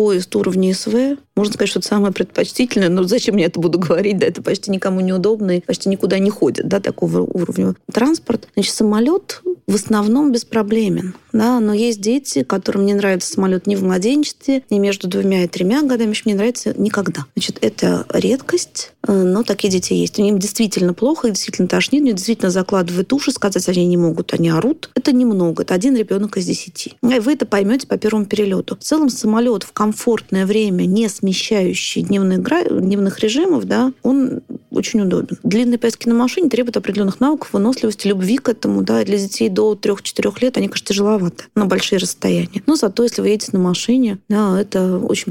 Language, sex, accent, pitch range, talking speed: Russian, female, native, 185-235 Hz, 185 wpm